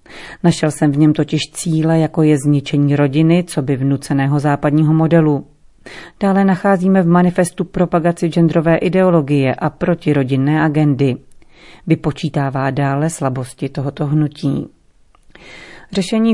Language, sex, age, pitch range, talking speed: Czech, female, 40-59, 145-170 Hz, 115 wpm